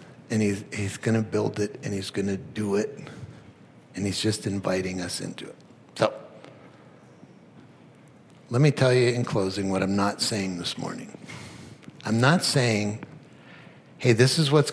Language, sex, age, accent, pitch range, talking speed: English, male, 60-79, American, 105-140 Hz, 165 wpm